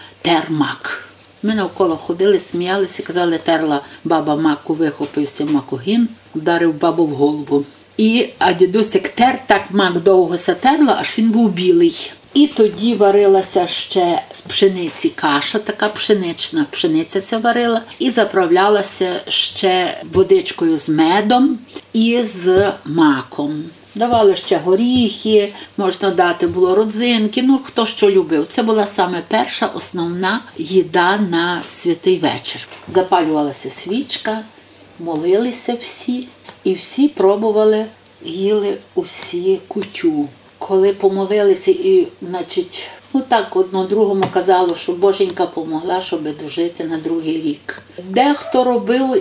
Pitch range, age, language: 180-250 Hz, 50-69, Ukrainian